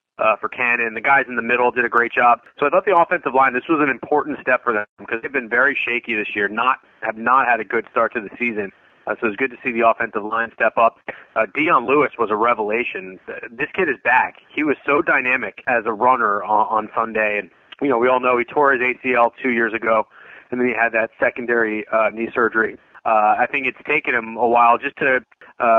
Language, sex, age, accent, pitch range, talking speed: English, male, 30-49, American, 115-140 Hz, 245 wpm